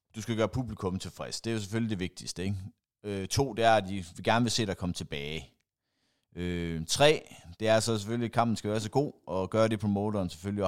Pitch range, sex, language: 95-115 Hz, male, Danish